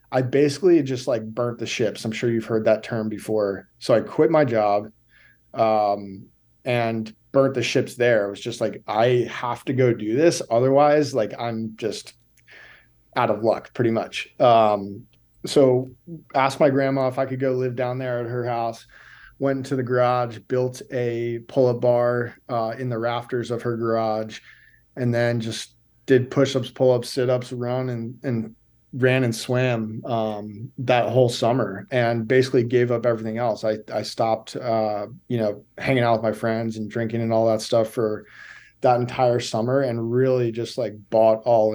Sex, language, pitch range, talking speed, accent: male, English, 110-130 Hz, 180 wpm, American